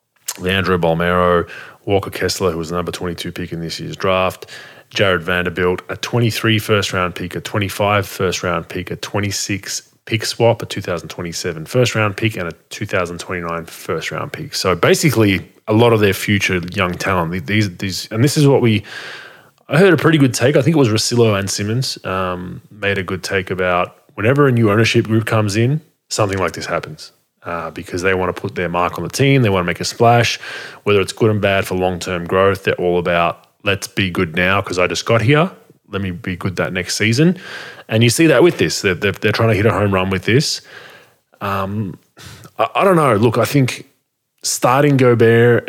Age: 20-39